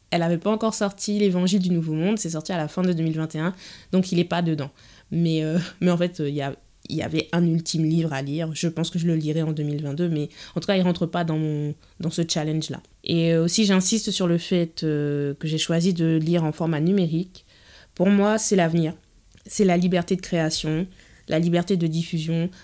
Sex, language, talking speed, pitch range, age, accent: female, French, 230 wpm, 165-185 Hz, 20-39, French